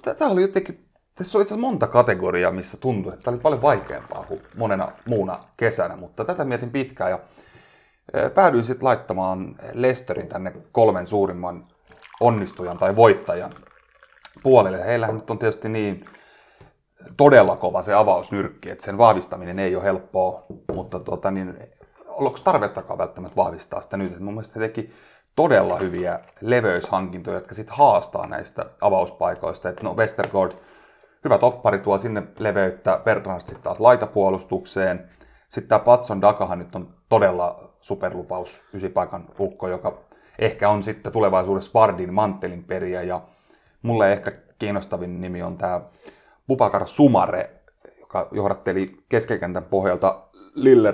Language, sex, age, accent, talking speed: Finnish, male, 30-49, native, 130 wpm